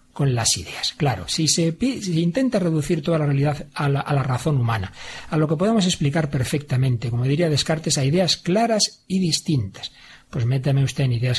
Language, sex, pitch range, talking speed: Spanish, male, 130-165 Hz, 205 wpm